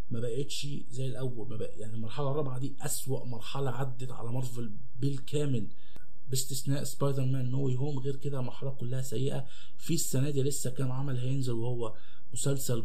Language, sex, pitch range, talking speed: Arabic, male, 125-145 Hz, 165 wpm